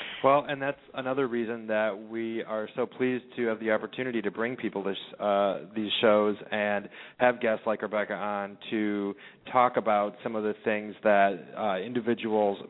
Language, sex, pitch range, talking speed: English, male, 100-120 Hz, 170 wpm